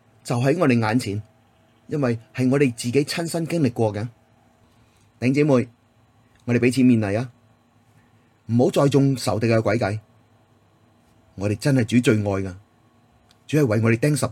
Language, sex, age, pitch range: Chinese, male, 30-49, 110-130 Hz